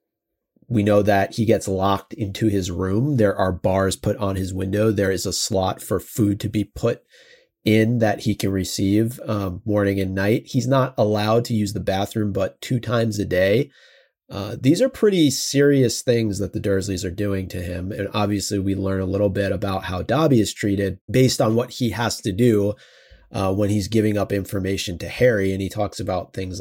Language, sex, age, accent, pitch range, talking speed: English, male, 30-49, American, 95-115 Hz, 205 wpm